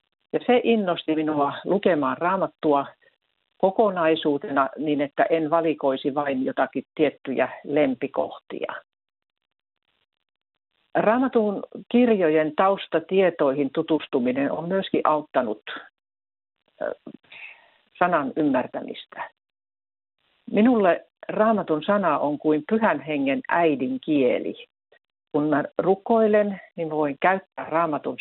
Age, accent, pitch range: 60-79, native, 145-200 Hz